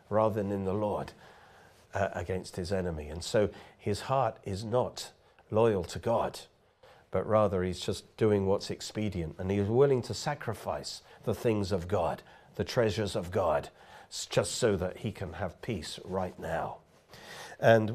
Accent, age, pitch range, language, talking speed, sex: British, 50-69, 95-125 Hz, English, 160 wpm, male